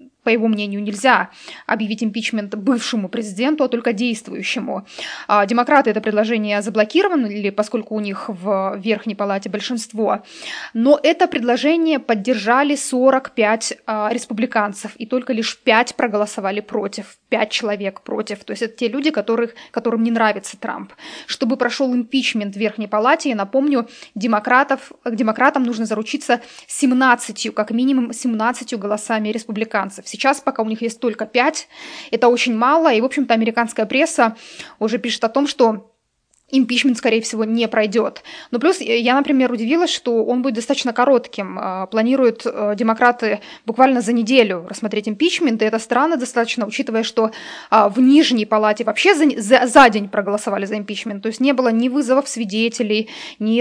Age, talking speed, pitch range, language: 20-39, 150 wpm, 220-260 Hz, Russian